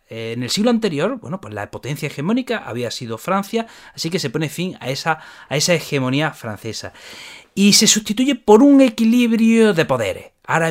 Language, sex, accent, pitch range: Spanish, male, Spanish, 140-225 Hz